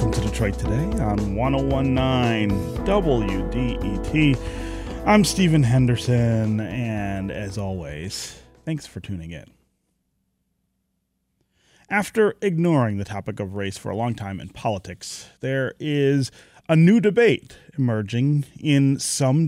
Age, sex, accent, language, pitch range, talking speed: 30-49, male, American, English, 105-155 Hz, 115 wpm